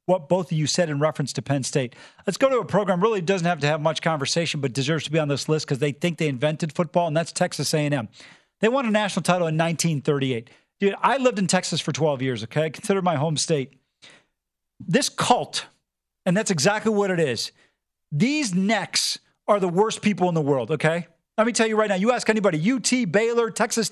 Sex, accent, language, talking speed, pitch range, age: male, American, English, 225 wpm, 165-220 Hz, 40-59